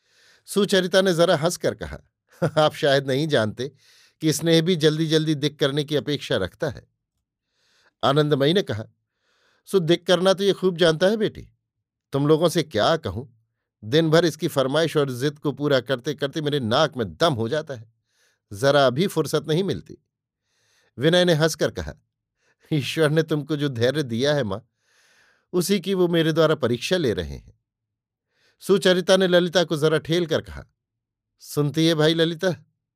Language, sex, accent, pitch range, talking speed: Hindi, male, native, 130-170 Hz, 165 wpm